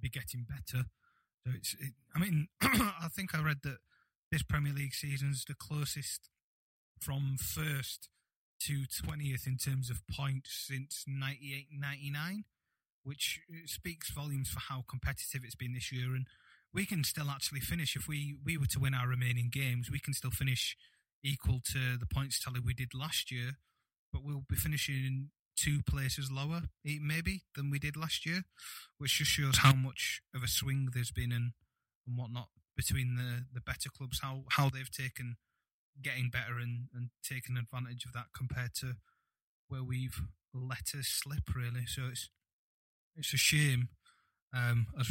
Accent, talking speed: British, 170 wpm